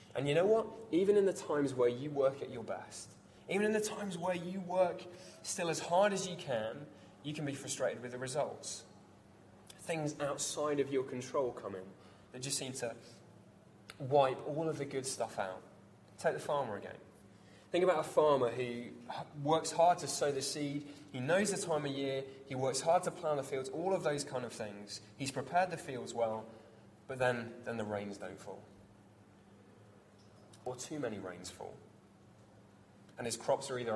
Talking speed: 190 wpm